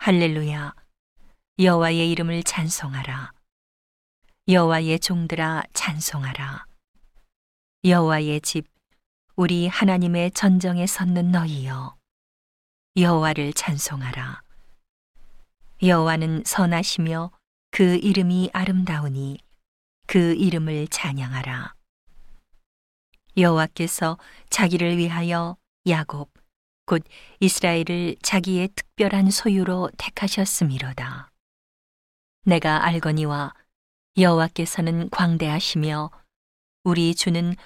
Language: Korean